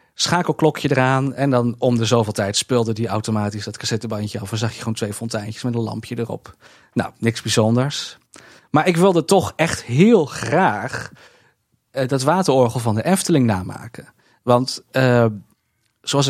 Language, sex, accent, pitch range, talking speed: Dutch, male, Dutch, 115-140 Hz, 155 wpm